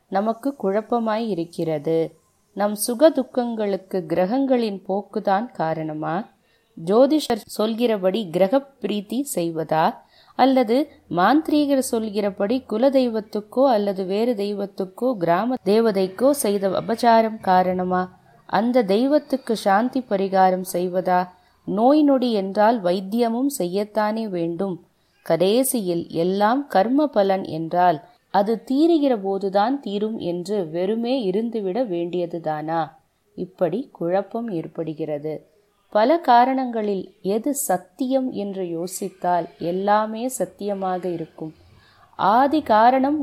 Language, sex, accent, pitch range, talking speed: Tamil, female, native, 180-245 Hz, 85 wpm